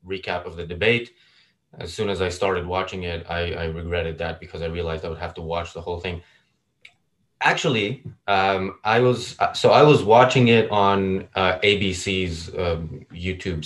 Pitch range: 90-115 Hz